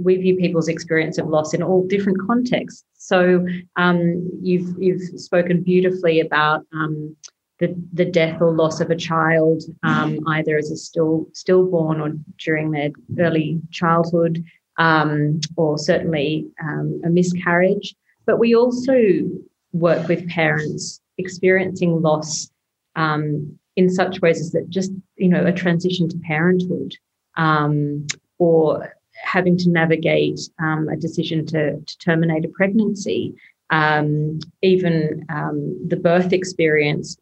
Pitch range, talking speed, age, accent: 155-180 Hz, 135 wpm, 30-49, Australian